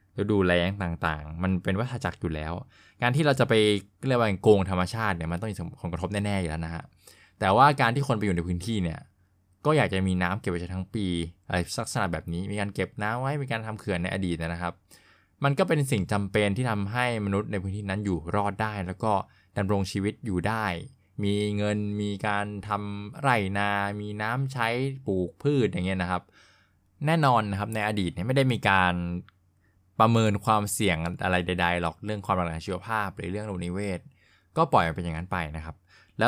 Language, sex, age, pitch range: Thai, male, 20-39, 90-110 Hz